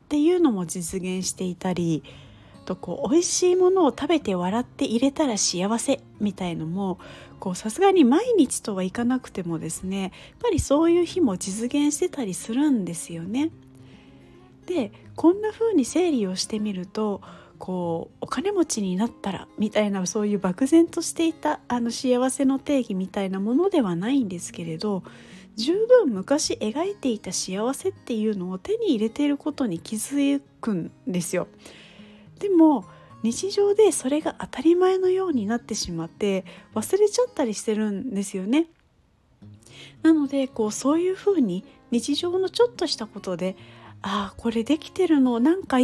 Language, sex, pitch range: Japanese, female, 195-315 Hz